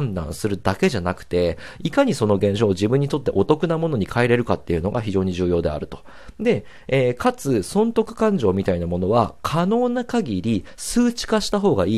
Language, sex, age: Japanese, male, 40-59